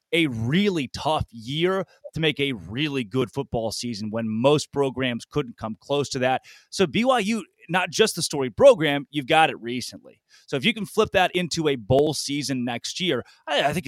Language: English